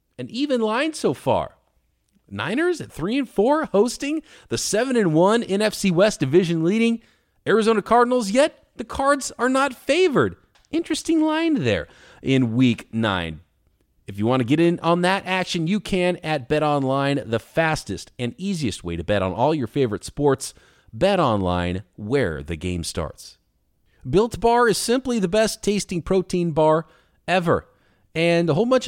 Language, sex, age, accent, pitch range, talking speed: English, male, 40-59, American, 120-180 Hz, 165 wpm